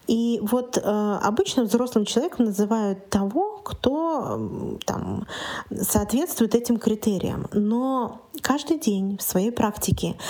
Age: 20-39